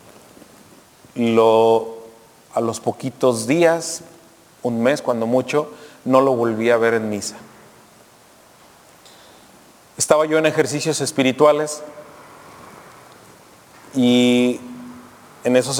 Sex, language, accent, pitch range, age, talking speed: male, Spanish, Mexican, 115-130 Hz, 40-59, 85 wpm